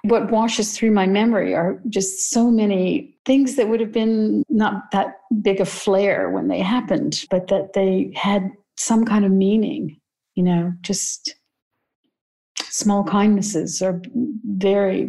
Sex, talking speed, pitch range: female, 145 wpm, 175-230 Hz